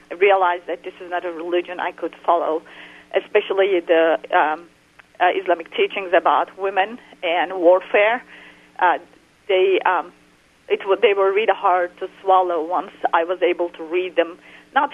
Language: English